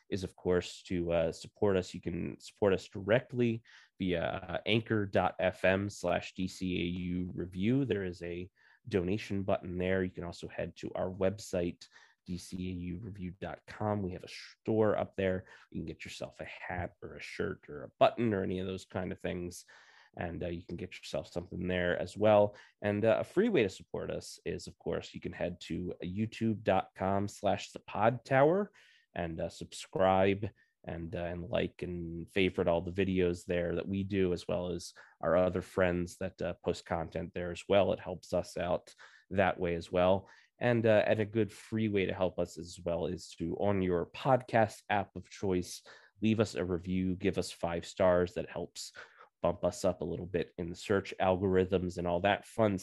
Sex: male